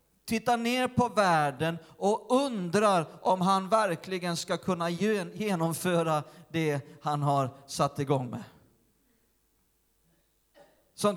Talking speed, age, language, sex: 100 wpm, 40-59, Swedish, male